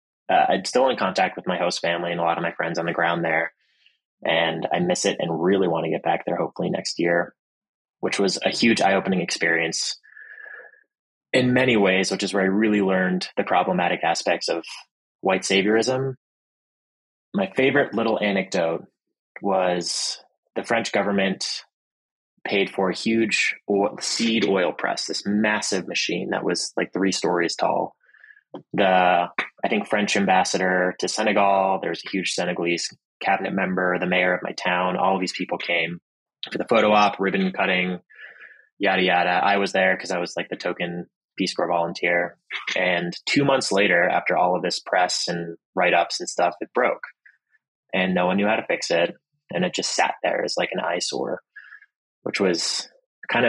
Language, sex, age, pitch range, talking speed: English, male, 20-39, 90-105 Hz, 175 wpm